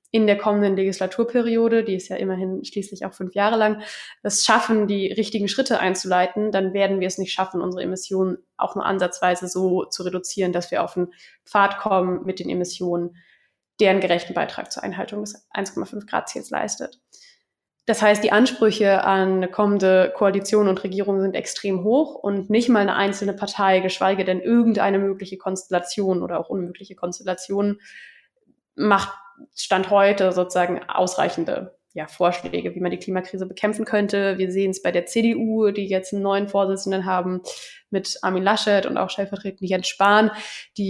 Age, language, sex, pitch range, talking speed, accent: 20-39, German, female, 185-210 Hz, 165 wpm, German